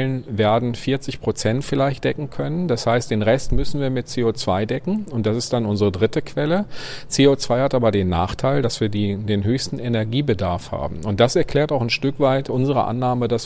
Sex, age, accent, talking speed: male, 40-59, German, 190 wpm